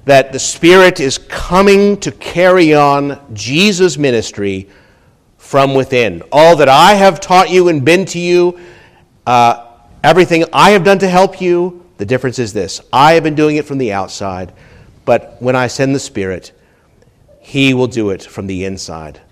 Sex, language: male, English